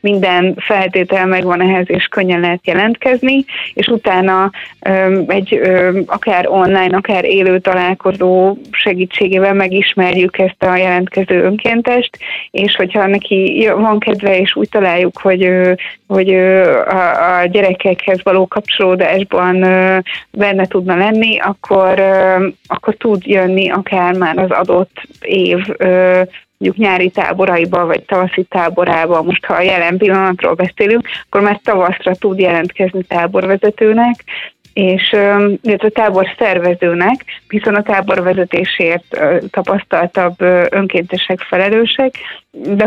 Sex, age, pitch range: female, 30-49, 185-210 Hz